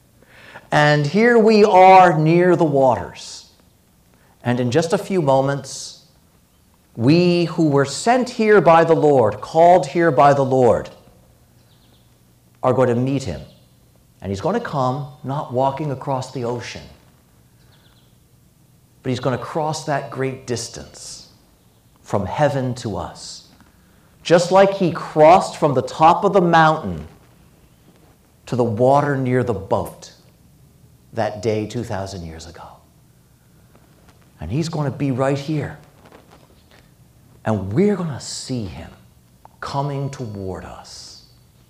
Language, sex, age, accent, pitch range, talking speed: English, male, 50-69, American, 105-155 Hz, 130 wpm